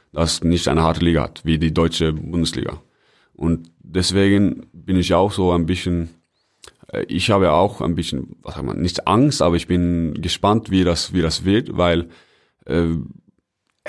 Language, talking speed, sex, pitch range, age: German, 170 wpm, male, 85-100 Hz, 30-49